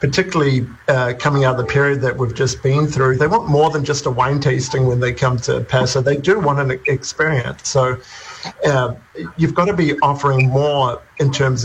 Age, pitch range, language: 50-69, 130-150 Hz, English